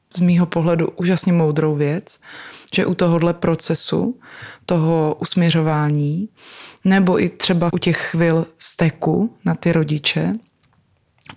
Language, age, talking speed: Czech, 20-39, 120 wpm